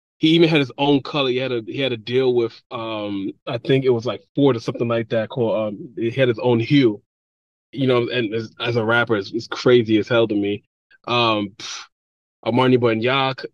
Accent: American